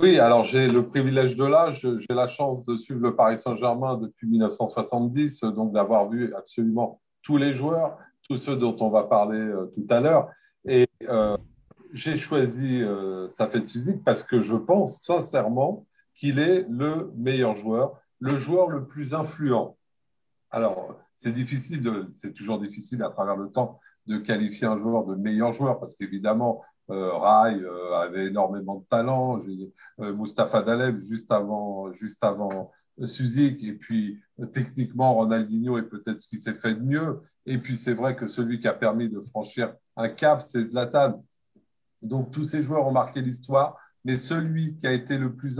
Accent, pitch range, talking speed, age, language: French, 110-140 Hz, 175 wpm, 50-69, French